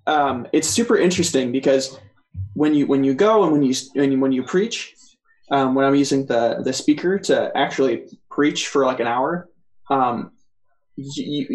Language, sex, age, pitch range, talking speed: English, male, 20-39, 135-165 Hz, 175 wpm